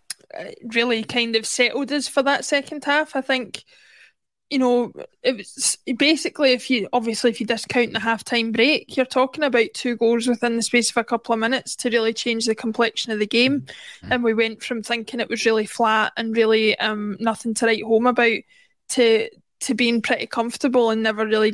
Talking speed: 200 wpm